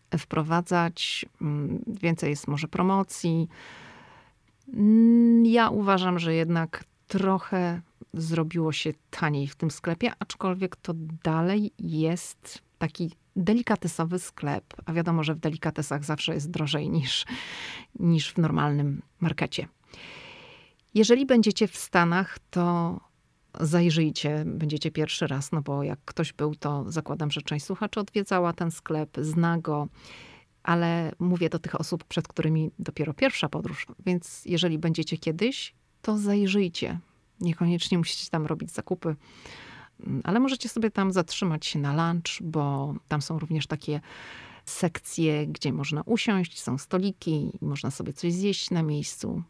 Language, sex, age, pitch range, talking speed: Polish, female, 40-59, 155-185 Hz, 130 wpm